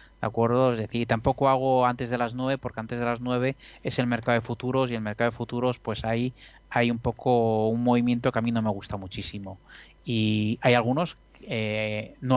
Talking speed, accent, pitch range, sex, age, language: 215 wpm, Spanish, 115-135 Hz, male, 30-49, Spanish